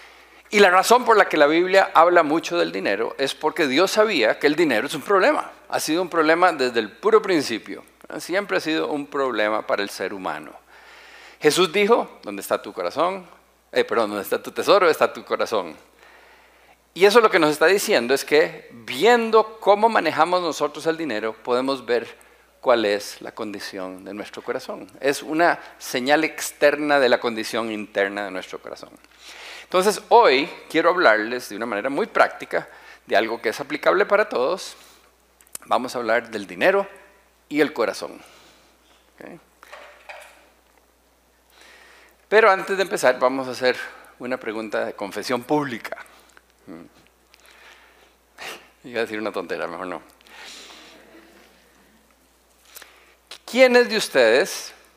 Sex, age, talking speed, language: male, 50-69, 150 wpm, Spanish